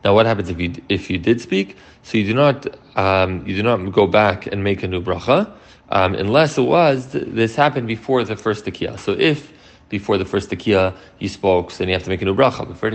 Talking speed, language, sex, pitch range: 250 wpm, English, male, 95-130 Hz